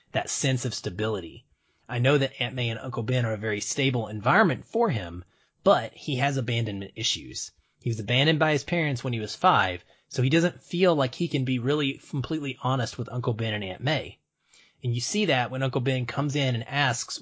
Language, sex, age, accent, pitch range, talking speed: English, male, 30-49, American, 115-140 Hz, 215 wpm